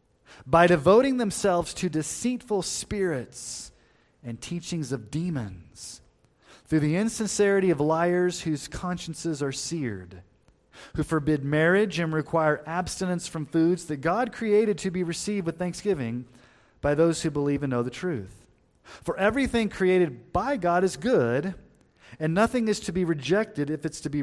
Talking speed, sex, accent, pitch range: 150 wpm, male, American, 120-175 Hz